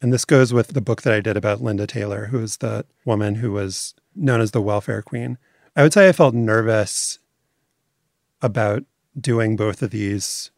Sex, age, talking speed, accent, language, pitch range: male, 30-49, 195 wpm, American, English, 105-130 Hz